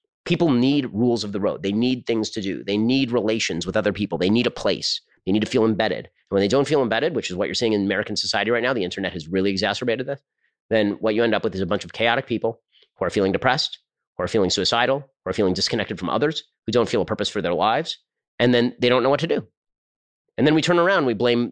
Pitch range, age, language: 105-135 Hz, 30-49, English